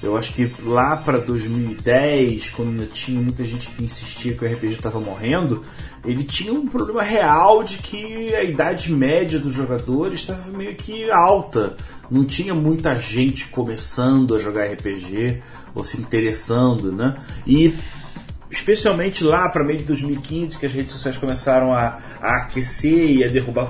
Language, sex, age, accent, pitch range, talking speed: Portuguese, male, 30-49, Brazilian, 120-170 Hz, 160 wpm